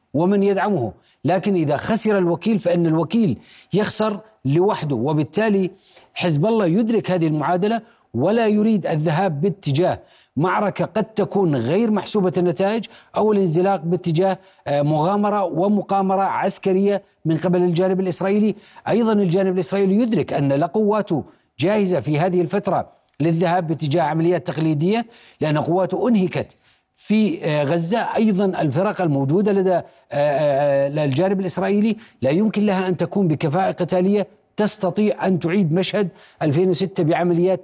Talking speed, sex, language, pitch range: 115 wpm, male, Arabic, 170-200 Hz